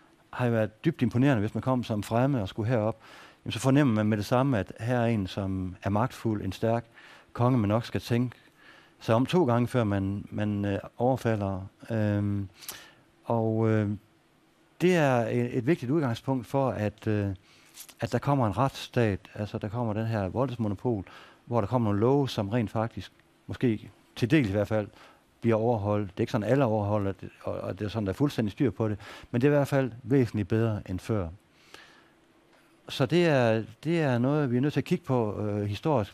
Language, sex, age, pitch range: Danish, male, 60-79, 105-135 Hz